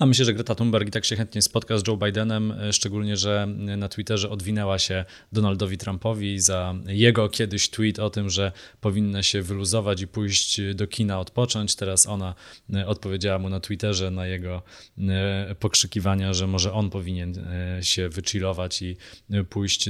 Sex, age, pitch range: male, 20-39, 100-115 Hz